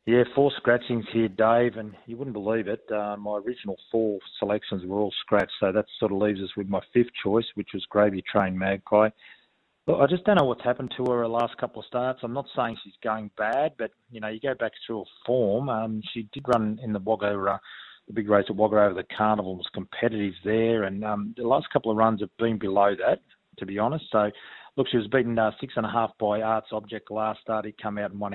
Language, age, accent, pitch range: English, 30-49, Australian, 100-120 Hz